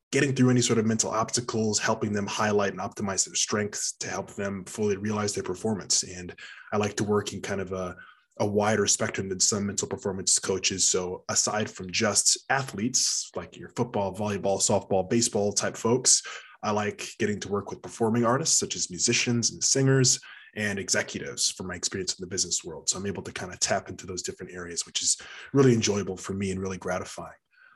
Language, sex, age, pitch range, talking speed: English, male, 20-39, 95-115 Hz, 200 wpm